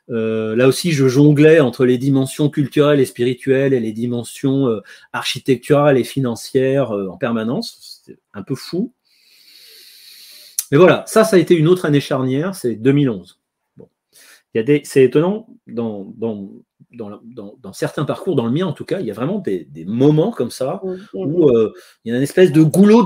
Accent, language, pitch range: French, French, 125-170 Hz